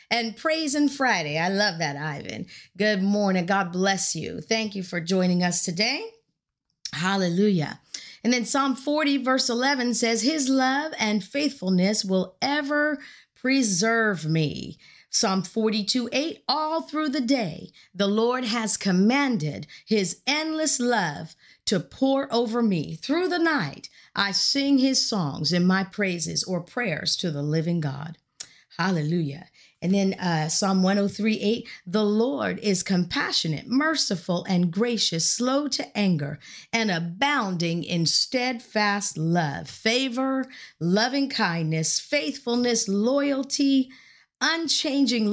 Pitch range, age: 180-255 Hz, 40-59